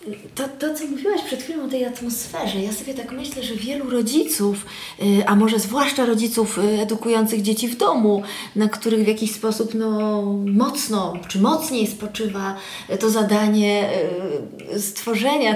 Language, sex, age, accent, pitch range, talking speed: Polish, female, 30-49, native, 215-260 Hz, 145 wpm